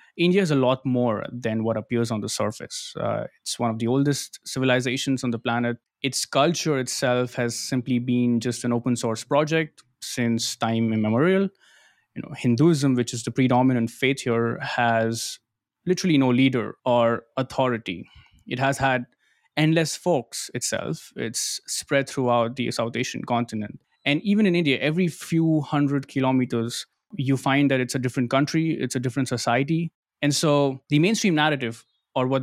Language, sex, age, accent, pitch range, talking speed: English, male, 20-39, Indian, 120-145 Hz, 165 wpm